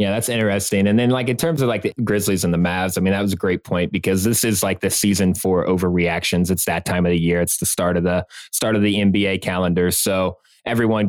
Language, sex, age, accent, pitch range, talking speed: English, male, 20-39, American, 90-105 Hz, 260 wpm